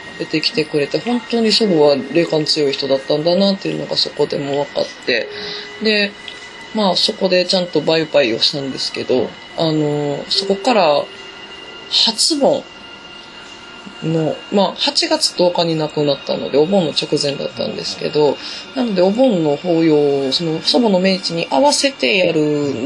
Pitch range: 155-225 Hz